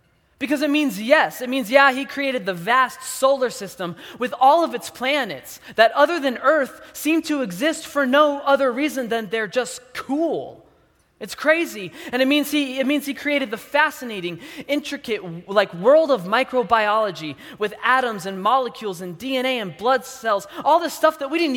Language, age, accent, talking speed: English, 20-39, American, 180 wpm